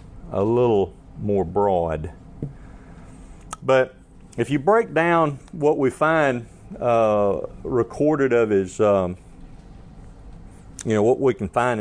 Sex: male